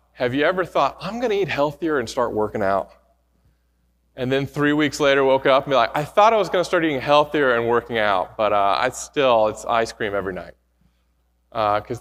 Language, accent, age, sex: English, American, 30-49, male